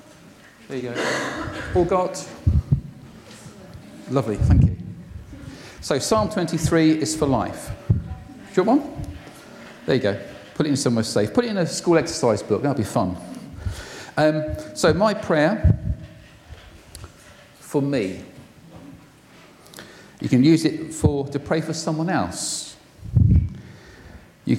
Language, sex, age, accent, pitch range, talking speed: English, male, 40-59, British, 115-155 Hz, 130 wpm